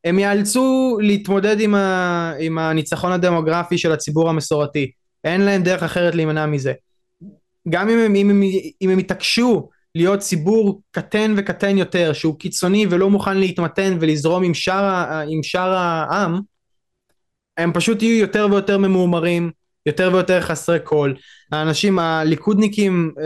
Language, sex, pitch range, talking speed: Hebrew, male, 165-200 Hz, 125 wpm